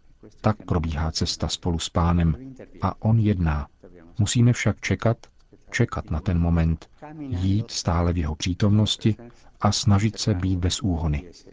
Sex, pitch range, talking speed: male, 85-105 Hz, 140 wpm